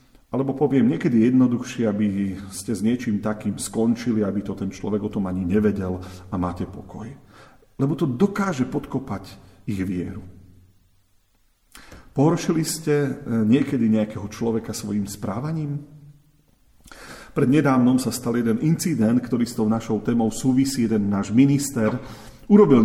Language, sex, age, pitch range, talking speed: Slovak, male, 40-59, 105-135 Hz, 130 wpm